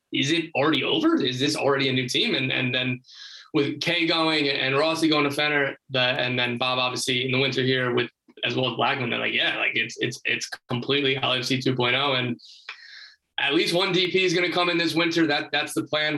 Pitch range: 130-150 Hz